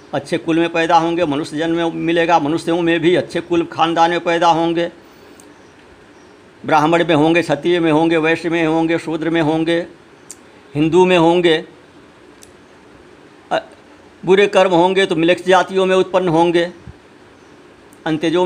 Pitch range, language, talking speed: 165-190 Hz, Hindi, 135 wpm